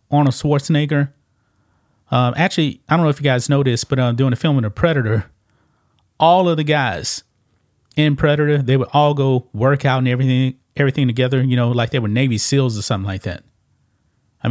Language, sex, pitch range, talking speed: English, male, 115-145 Hz, 200 wpm